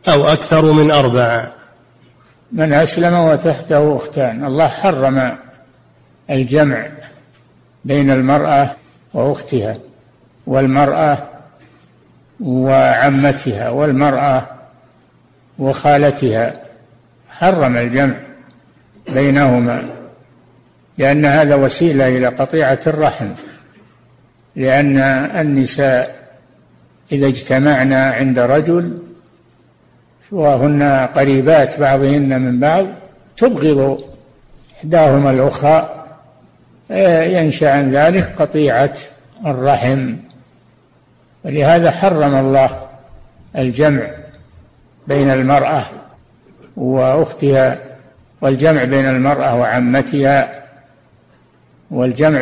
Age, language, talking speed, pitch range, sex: 60-79, Arabic, 65 wpm, 130-150 Hz, male